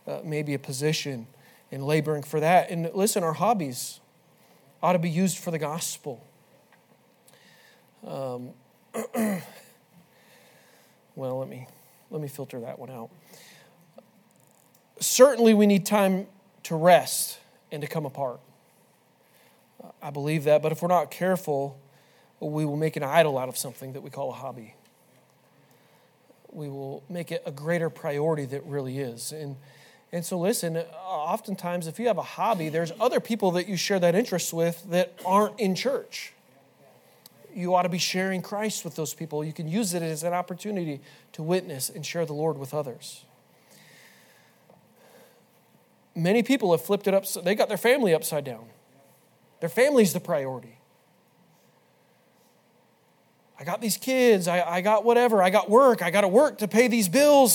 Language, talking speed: English, 160 wpm